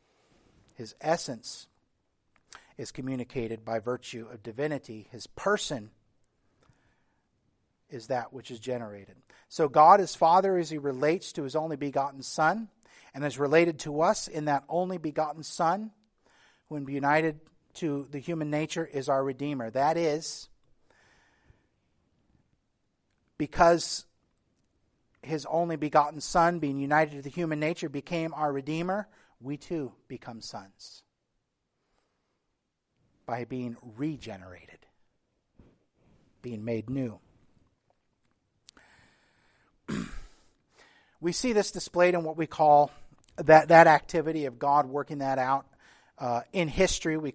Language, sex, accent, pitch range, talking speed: English, male, American, 130-165 Hz, 115 wpm